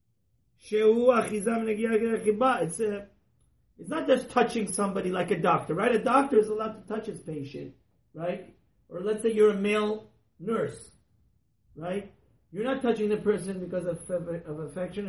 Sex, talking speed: male, 150 wpm